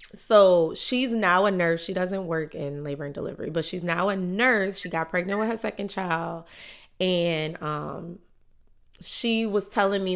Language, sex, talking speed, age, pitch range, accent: English, female, 175 wpm, 20-39, 165-210 Hz, American